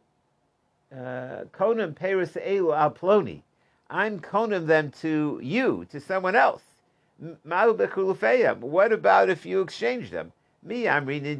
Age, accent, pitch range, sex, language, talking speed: 50-69, American, 140-185 Hz, male, English, 100 wpm